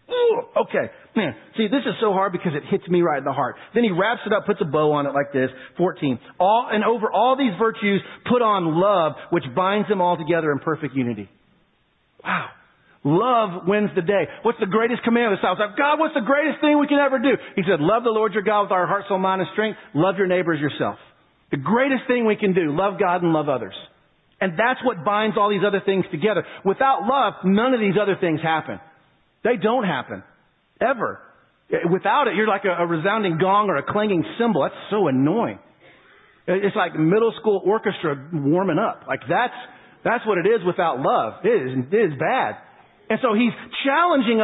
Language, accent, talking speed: English, American, 210 wpm